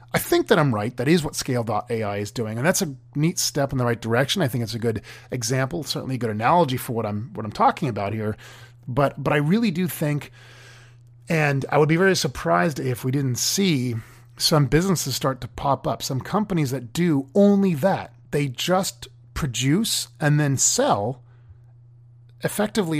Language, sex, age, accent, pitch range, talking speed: English, male, 30-49, American, 120-150 Hz, 190 wpm